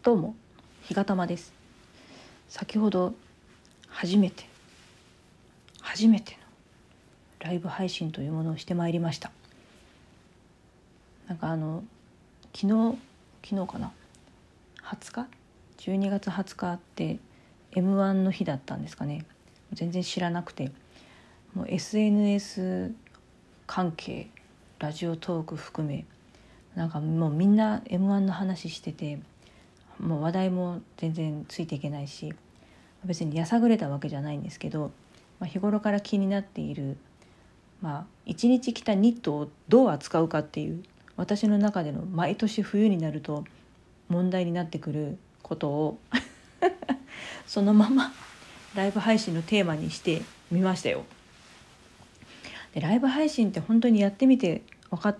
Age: 40-59